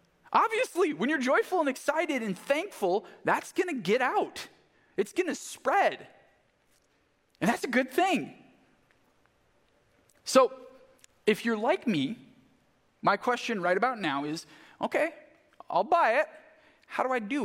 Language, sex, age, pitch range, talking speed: English, male, 20-39, 185-295 Hz, 140 wpm